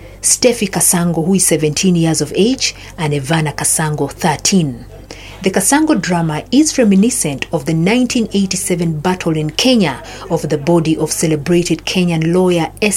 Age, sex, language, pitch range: 50-69, female, English, 155-220 Hz